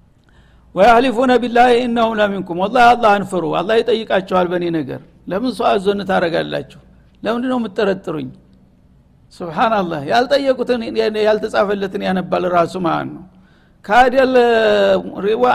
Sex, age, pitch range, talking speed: male, 60-79, 200-245 Hz, 100 wpm